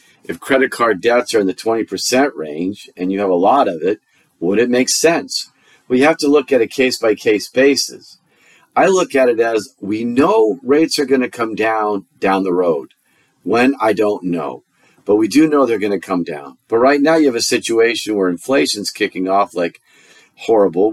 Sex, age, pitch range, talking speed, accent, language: male, 50-69, 105-135 Hz, 210 wpm, American, English